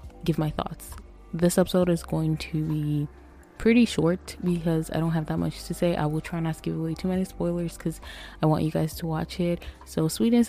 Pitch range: 155-175 Hz